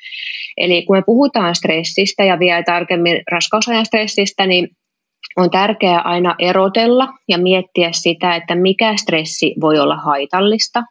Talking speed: 130 wpm